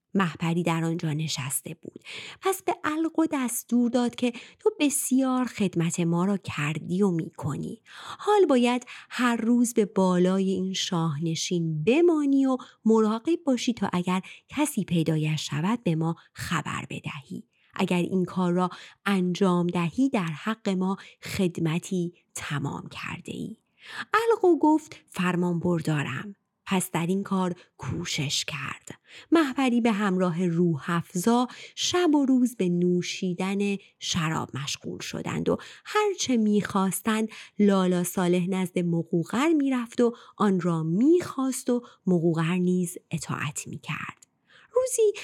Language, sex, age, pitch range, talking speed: Persian, female, 30-49, 175-250 Hz, 125 wpm